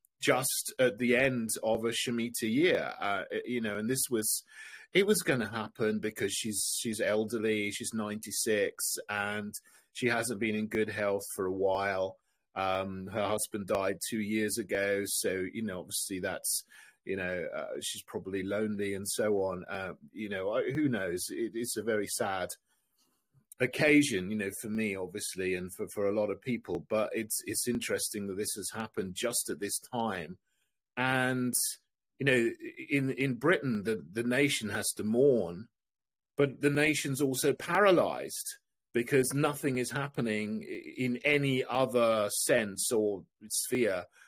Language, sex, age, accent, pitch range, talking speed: English, male, 30-49, British, 105-130 Hz, 160 wpm